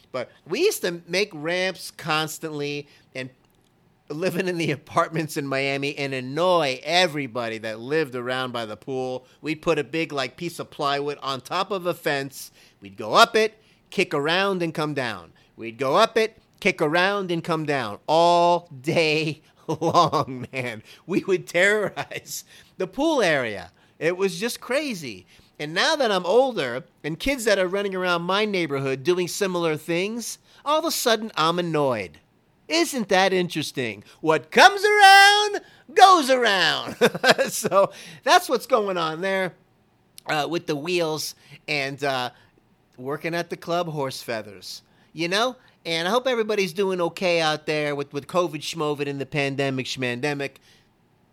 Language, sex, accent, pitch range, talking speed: English, male, American, 140-190 Hz, 155 wpm